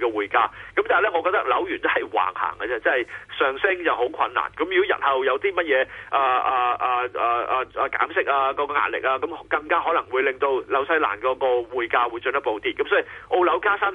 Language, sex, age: Chinese, male, 30-49